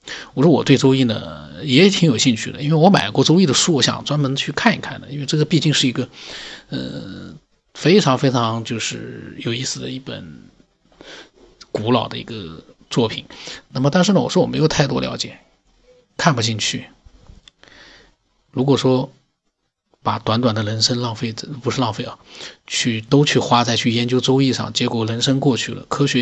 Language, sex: Chinese, male